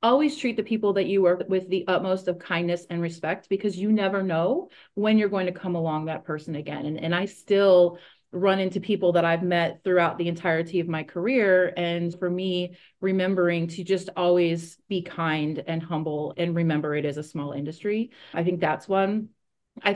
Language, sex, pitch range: English, female, 175-210 Hz